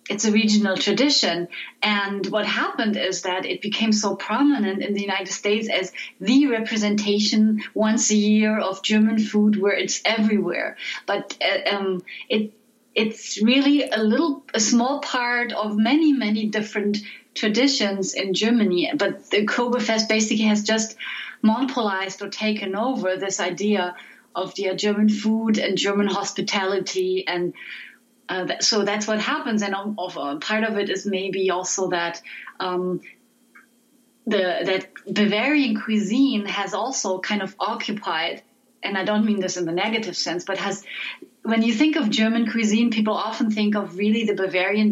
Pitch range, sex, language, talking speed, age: 190-225 Hz, female, English, 155 wpm, 30-49